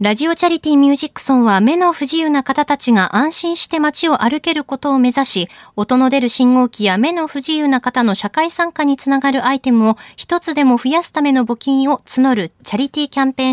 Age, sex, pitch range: 20-39, female, 210-265 Hz